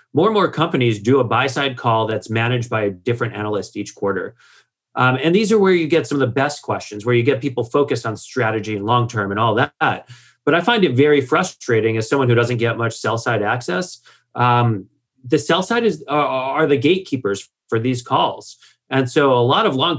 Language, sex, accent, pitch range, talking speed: English, male, American, 110-140 Hz, 225 wpm